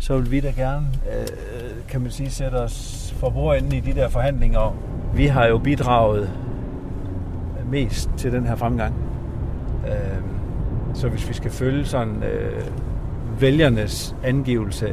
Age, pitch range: 50-69, 95-120 Hz